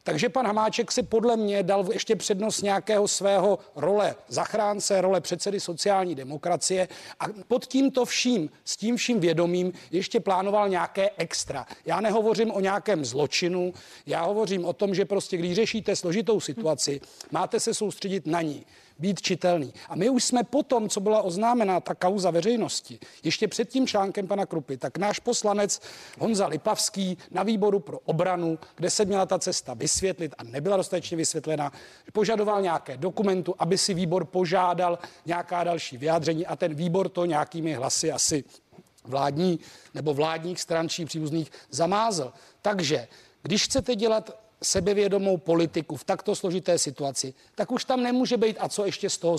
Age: 40-59